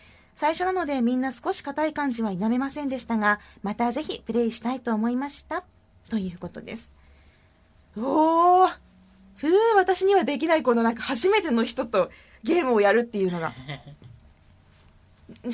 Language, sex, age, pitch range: Japanese, female, 20-39, 195-300 Hz